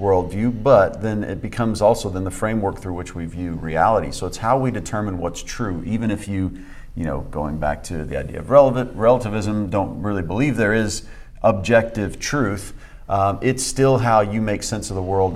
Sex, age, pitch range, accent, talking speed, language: male, 40-59, 90-120 Hz, American, 200 wpm, English